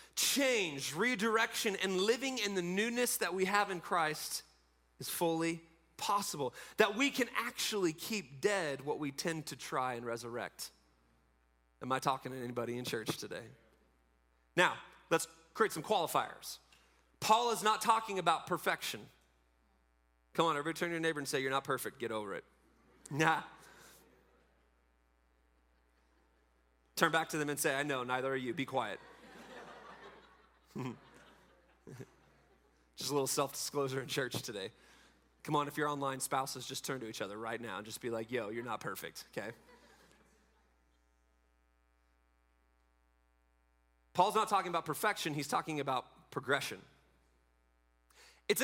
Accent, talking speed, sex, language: American, 140 wpm, male, English